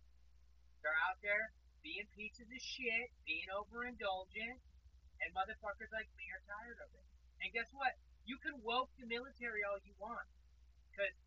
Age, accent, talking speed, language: 30-49, American, 155 wpm, English